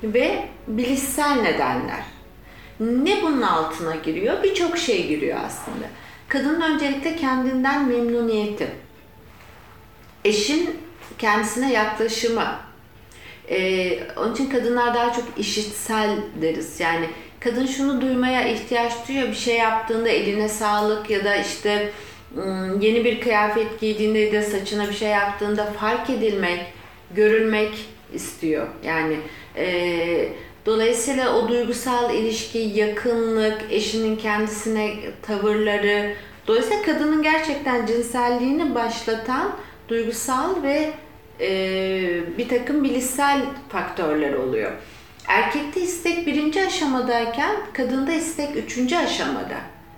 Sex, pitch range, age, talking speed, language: female, 210-270 Hz, 40-59, 100 wpm, Turkish